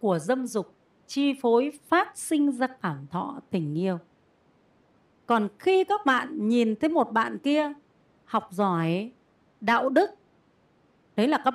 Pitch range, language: 185-275 Hz, Vietnamese